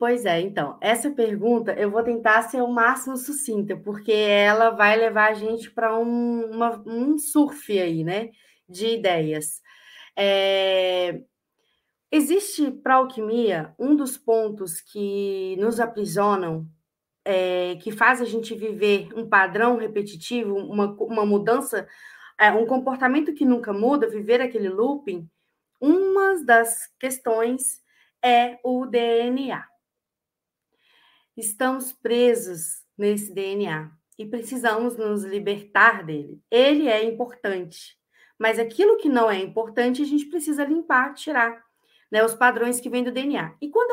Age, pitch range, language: 20-39, 205-255 Hz, Portuguese